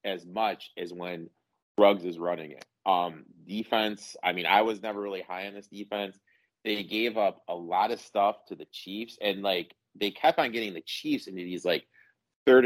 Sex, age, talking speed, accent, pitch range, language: male, 30-49, 200 wpm, American, 95-120 Hz, English